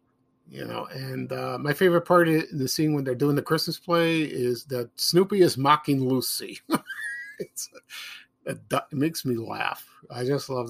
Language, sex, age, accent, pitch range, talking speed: English, male, 50-69, American, 130-165 Hz, 180 wpm